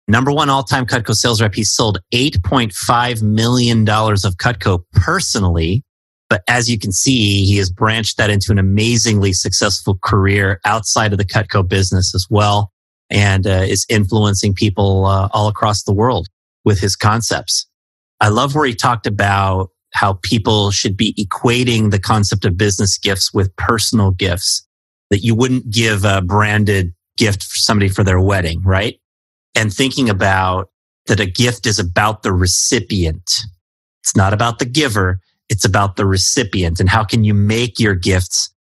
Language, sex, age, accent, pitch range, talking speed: English, male, 30-49, American, 95-110 Hz, 165 wpm